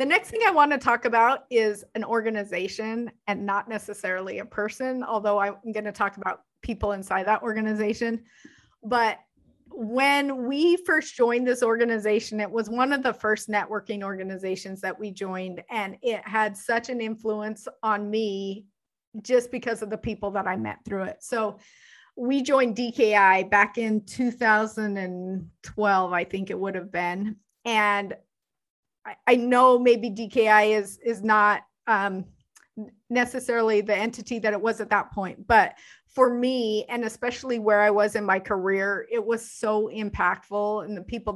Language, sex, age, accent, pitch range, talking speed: English, female, 30-49, American, 200-235 Hz, 160 wpm